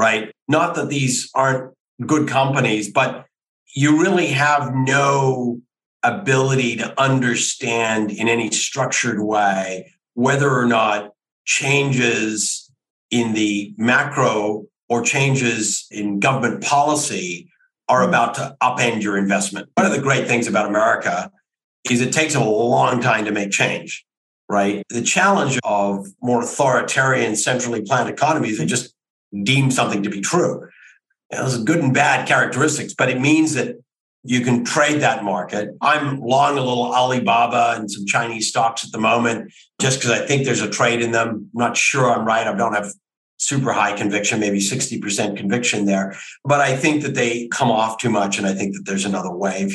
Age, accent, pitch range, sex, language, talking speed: 50-69, American, 105-135 Hz, male, English, 165 wpm